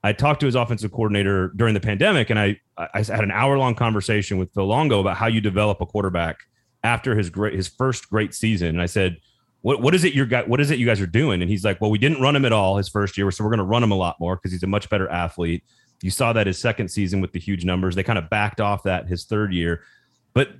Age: 30-49